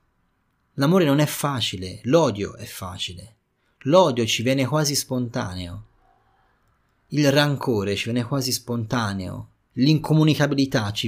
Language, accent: Italian, native